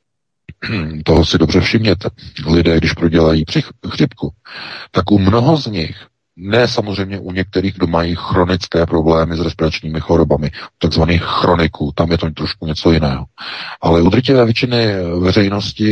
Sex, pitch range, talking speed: male, 80-100 Hz, 140 wpm